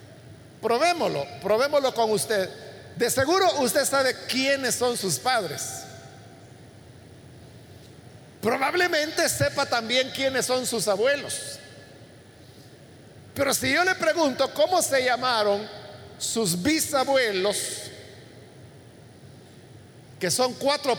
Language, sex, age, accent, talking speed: Spanish, male, 50-69, Mexican, 90 wpm